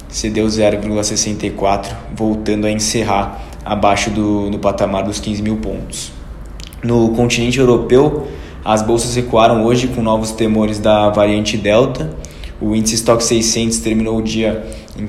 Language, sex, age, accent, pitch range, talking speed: Portuguese, male, 20-39, Brazilian, 105-115 Hz, 135 wpm